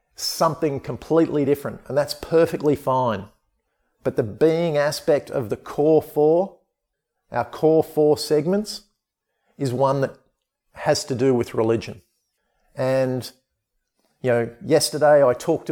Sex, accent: male, Australian